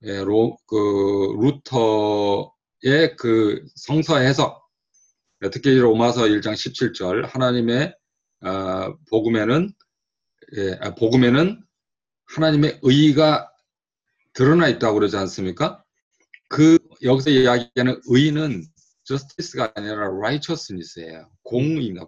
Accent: native